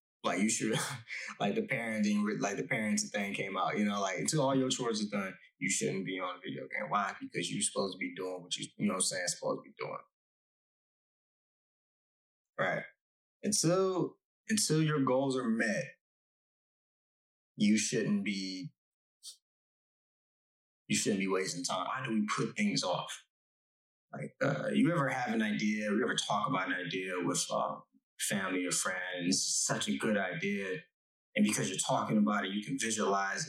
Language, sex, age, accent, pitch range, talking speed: English, male, 20-39, American, 95-155 Hz, 175 wpm